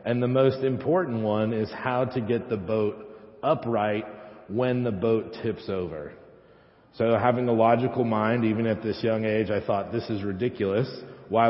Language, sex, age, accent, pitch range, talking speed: English, male, 40-59, American, 105-125 Hz, 170 wpm